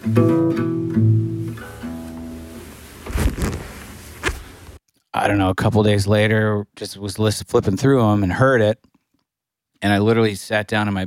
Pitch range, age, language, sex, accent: 95-110 Hz, 40-59, English, male, American